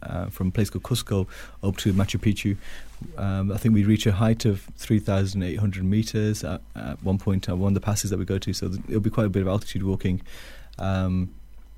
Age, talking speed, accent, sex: 30-49, 220 wpm, British, male